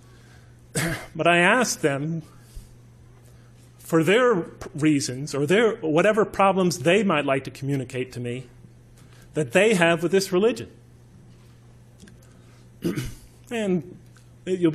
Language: English